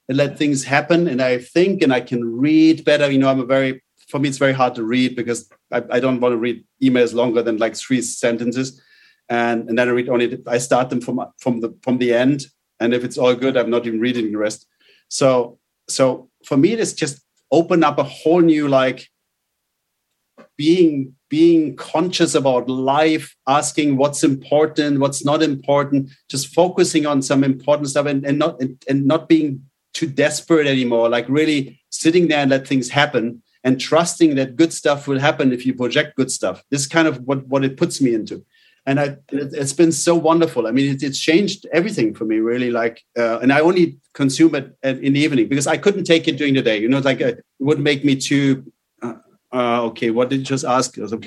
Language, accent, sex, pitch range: English, German, male, 125-150 Hz